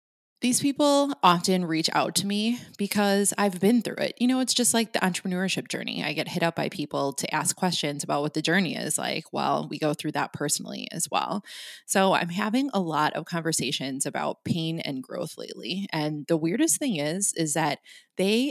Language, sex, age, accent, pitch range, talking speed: English, female, 20-39, American, 155-205 Hz, 205 wpm